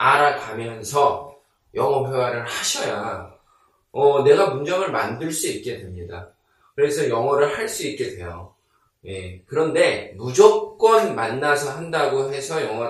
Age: 20-39